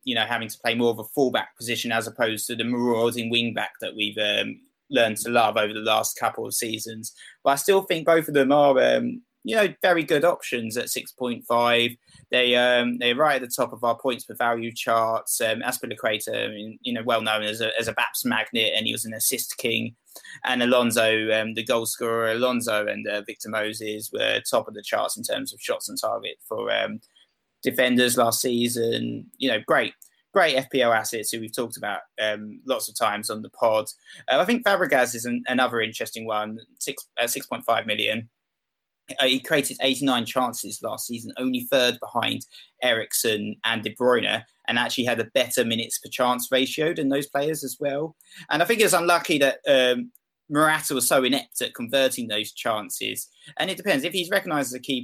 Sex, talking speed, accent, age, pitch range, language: male, 200 wpm, British, 20-39, 115-145 Hz, English